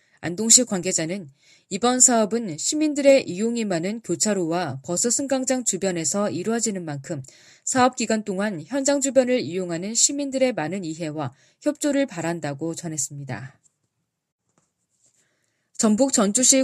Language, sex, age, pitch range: Korean, female, 20-39, 165-240 Hz